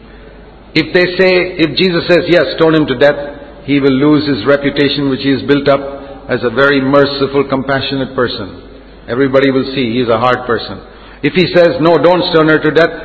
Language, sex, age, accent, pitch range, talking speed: English, male, 50-69, Indian, 110-145 Hz, 200 wpm